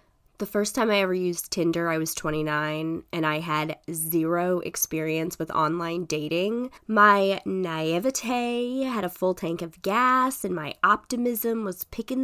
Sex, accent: female, American